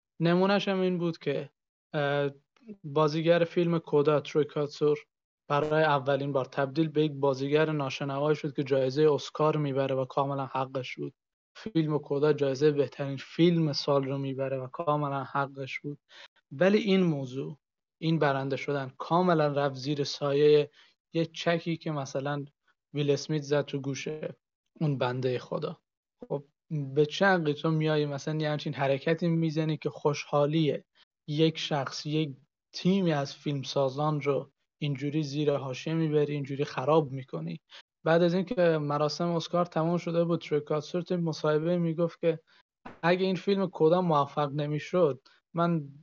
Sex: male